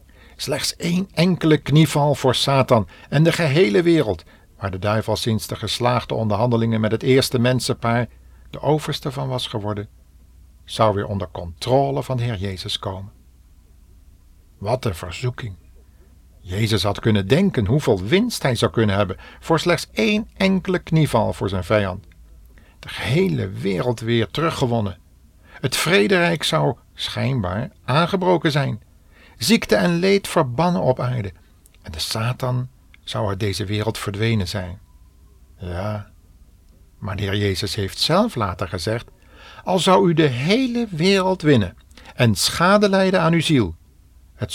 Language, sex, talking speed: Dutch, male, 140 wpm